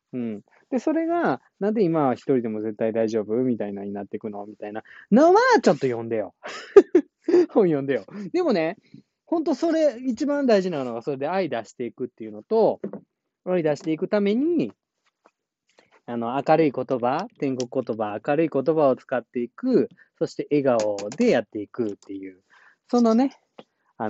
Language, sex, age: Japanese, male, 20-39